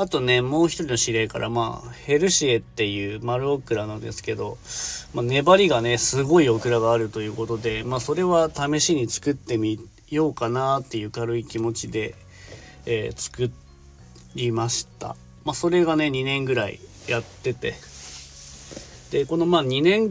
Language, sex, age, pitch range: Japanese, male, 40-59, 110-145 Hz